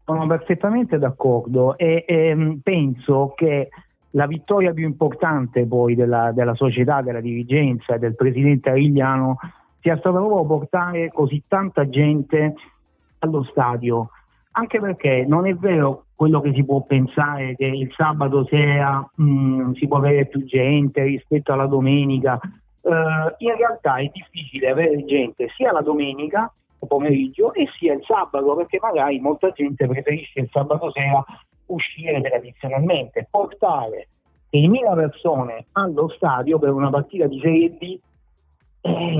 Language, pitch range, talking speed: Italian, 135-165 Hz, 140 wpm